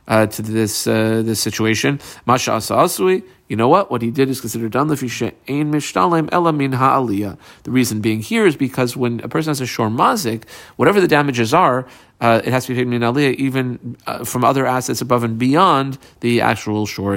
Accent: American